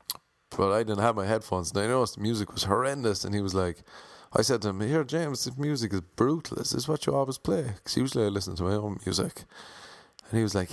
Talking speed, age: 255 wpm, 30-49